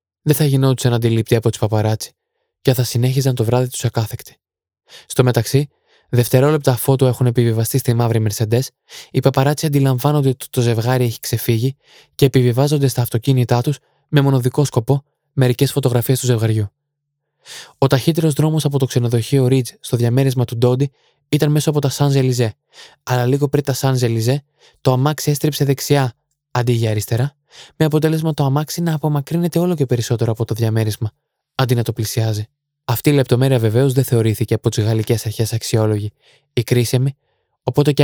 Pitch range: 120-145 Hz